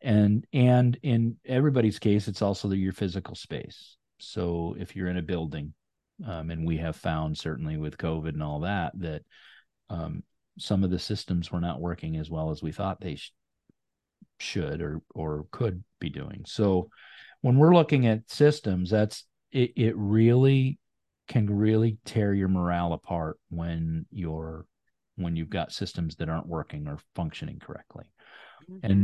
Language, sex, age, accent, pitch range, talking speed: English, male, 40-59, American, 85-110 Hz, 165 wpm